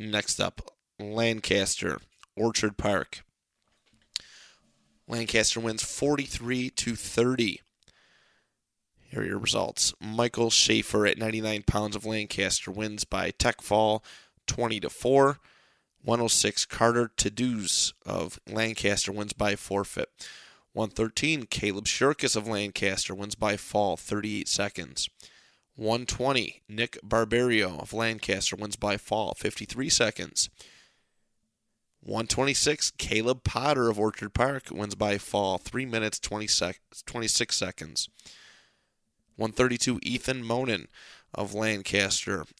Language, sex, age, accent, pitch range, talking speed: English, male, 30-49, American, 100-115 Hz, 110 wpm